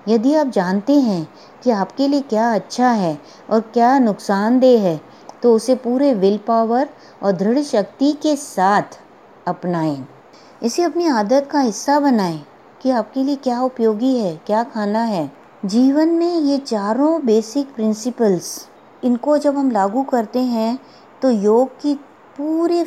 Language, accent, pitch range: English, Indian, 200-265 Hz